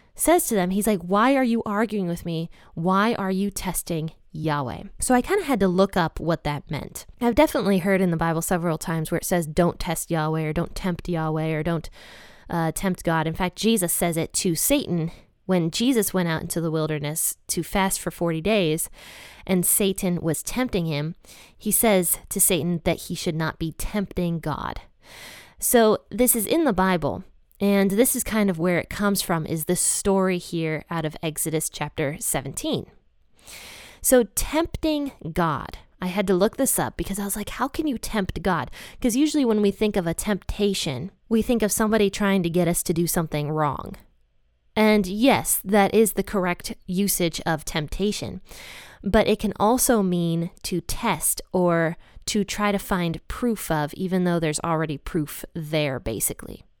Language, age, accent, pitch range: English, 20-39, American, 165-210 Hz